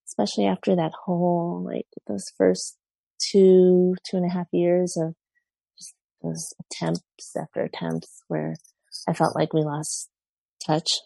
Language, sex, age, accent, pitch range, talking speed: English, female, 30-49, American, 155-190 Hz, 140 wpm